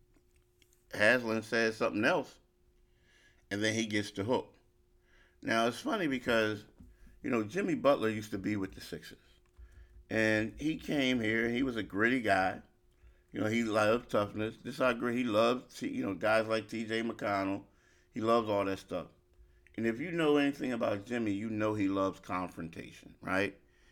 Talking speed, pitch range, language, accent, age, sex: 170 wpm, 90-110 Hz, English, American, 50-69, male